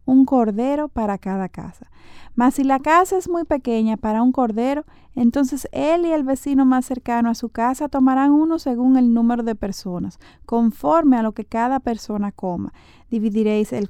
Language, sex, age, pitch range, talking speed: Spanish, female, 30-49, 210-260 Hz, 175 wpm